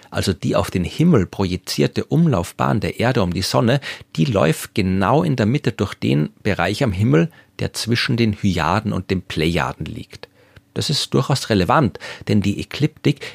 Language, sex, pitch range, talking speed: German, male, 90-125 Hz, 170 wpm